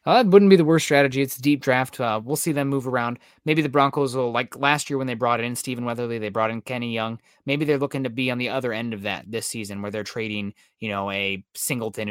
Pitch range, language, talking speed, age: 115-140 Hz, English, 275 wpm, 20-39